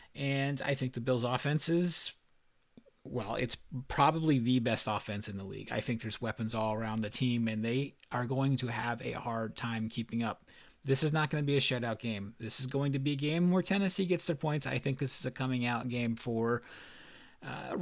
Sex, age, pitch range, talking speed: male, 30-49, 110-130 Hz, 220 wpm